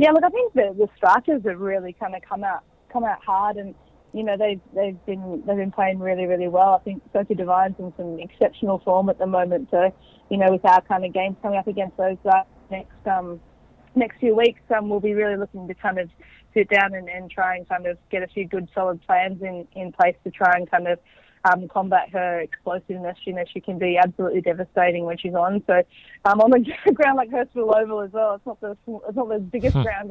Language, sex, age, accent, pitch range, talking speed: English, female, 20-39, Australian, 185-210 Hz, 240 wpm